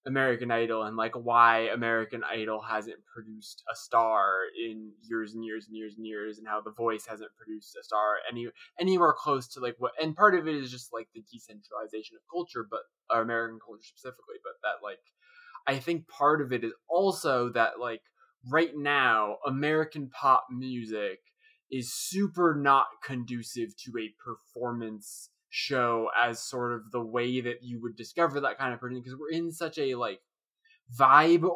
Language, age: English, 20-39